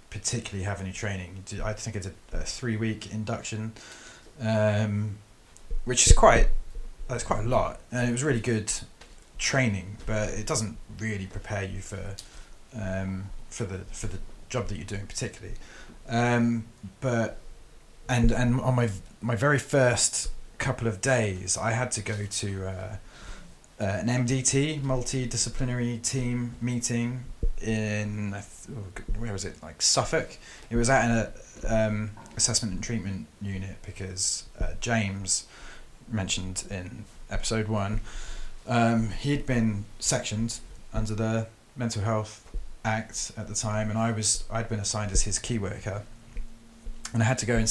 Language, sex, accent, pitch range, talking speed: English, male, British, 100-115 Hz, 145 wpm